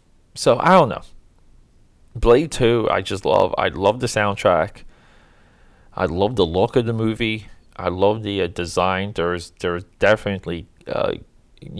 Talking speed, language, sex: 150 wpm, English, male